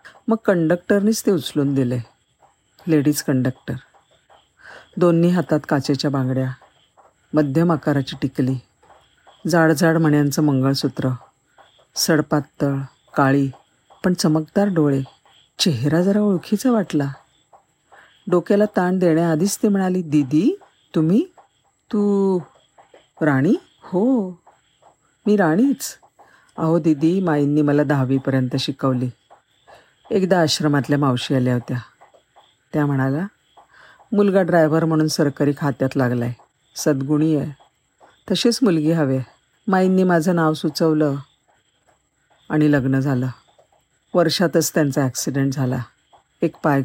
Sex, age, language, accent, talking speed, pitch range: female, 50-69, Marathi, native, 95 wpm, 140-180 Hz